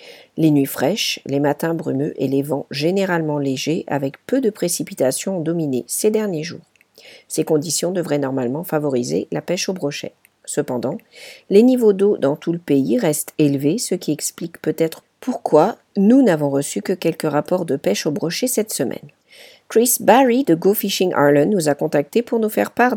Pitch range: 150-210 Hz